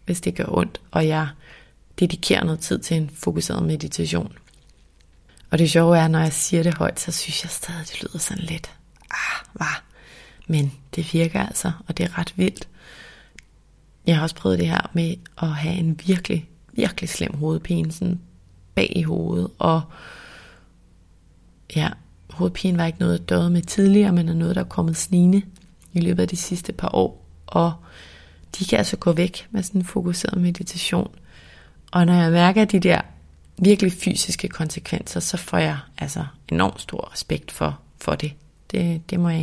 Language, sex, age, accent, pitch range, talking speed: Danish, female, 30-49, native, 135-175 Hz, 175 wpm